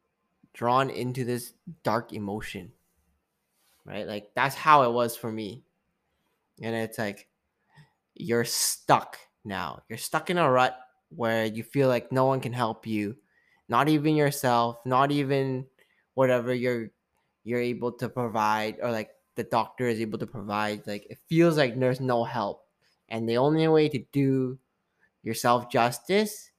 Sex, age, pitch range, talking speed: male, 10-29, 115-150 Hz, 150 wpm